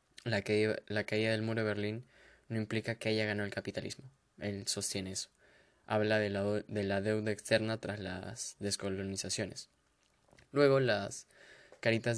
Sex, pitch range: male, 105-120 Hz